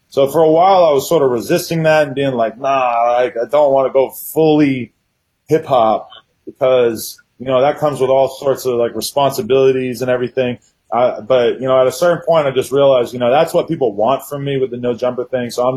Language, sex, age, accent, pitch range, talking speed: English, male, 30-49, American, 110-135 Hz, 235 wpm